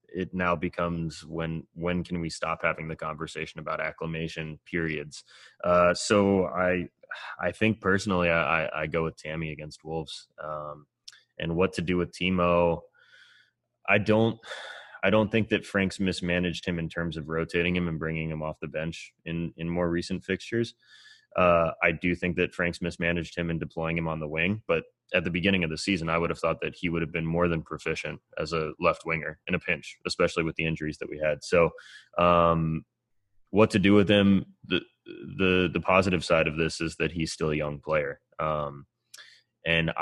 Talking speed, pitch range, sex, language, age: 195 wpm, 80-90 Hz, male, English, 20-39